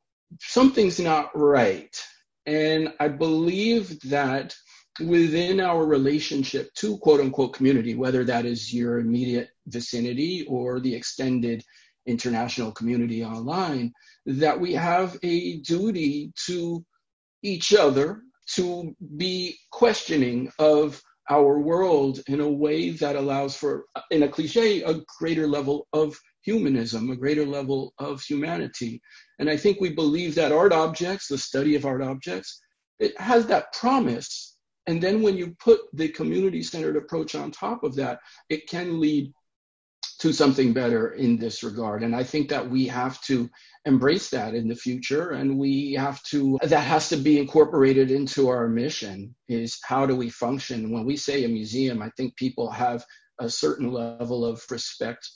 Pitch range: 125-165 Hz